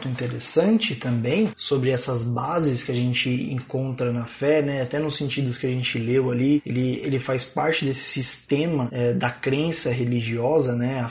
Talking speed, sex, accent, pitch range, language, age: 165 wpm, male, Brazilian, 135-170 Hz, Portuguese, 20-39